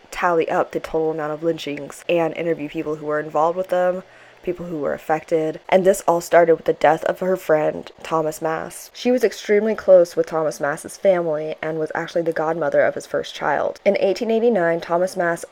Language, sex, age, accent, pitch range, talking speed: English, female, 20-39, American, 160-190 Hz, 200 wpm